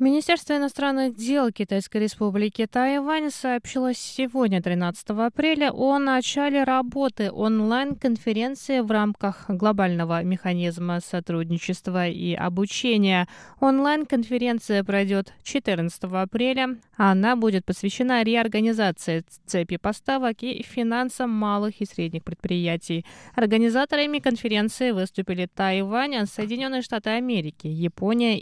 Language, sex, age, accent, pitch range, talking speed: Russian, female, 20-39, native, 190-245 Hz, 95 wpm